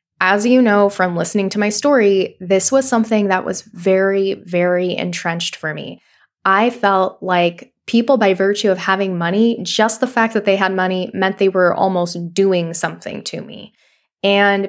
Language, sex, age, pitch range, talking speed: English, female, 10-29, 190-230 Hz, 175 wpm